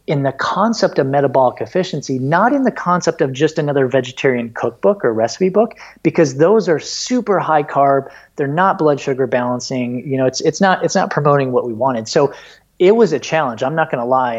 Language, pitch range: English, 125-160 Hz